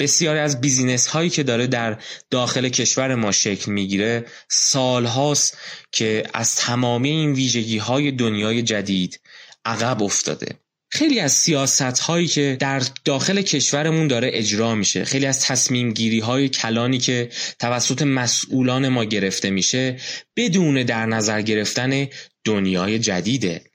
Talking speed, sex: 130 wpm, male